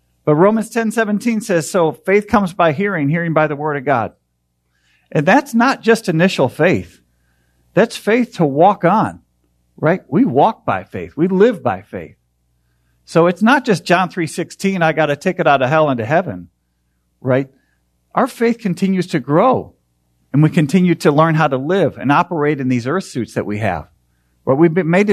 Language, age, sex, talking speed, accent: English, 50-69, male, 190 wpm, American